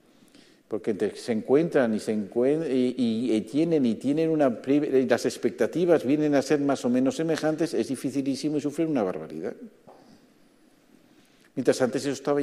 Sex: male